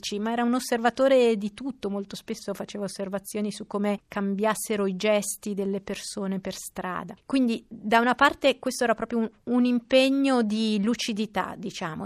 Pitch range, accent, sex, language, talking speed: 200-225 Hz, native, female, Italian, 160 wpm